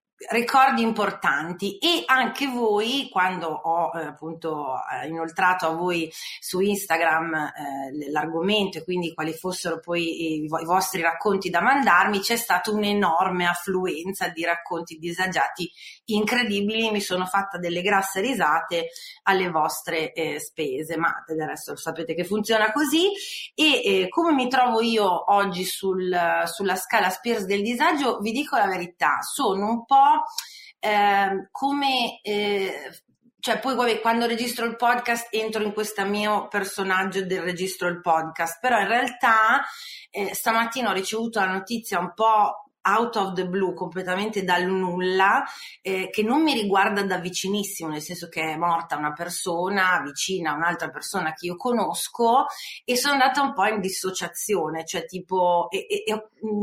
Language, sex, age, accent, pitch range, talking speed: Italian, female, 30-49, native, 175-225 Hz, 155 wpm